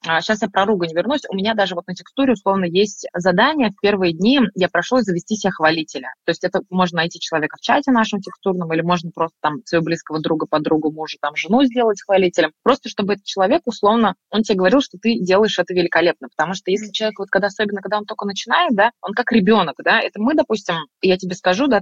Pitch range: 180-225 Hz